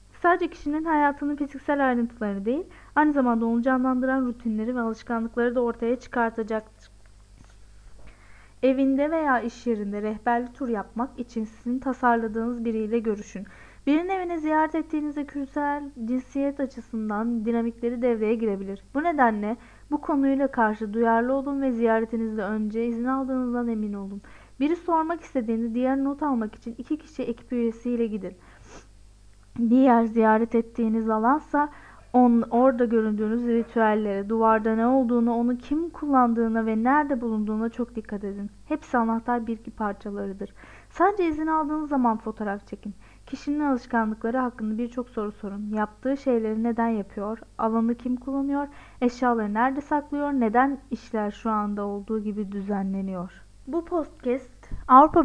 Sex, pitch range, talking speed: female, 215-265 Hz, 130 wpm